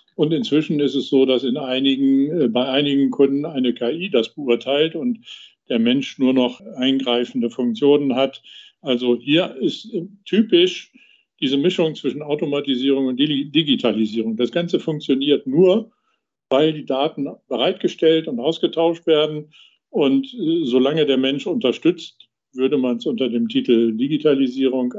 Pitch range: 130-180 Hz